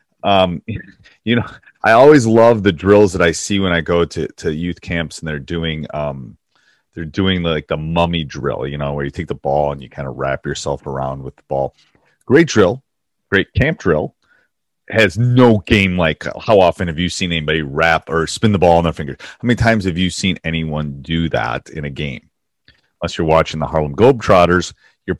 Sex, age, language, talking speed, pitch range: male, 30-49, English, 205 wpm, 80-100 Hz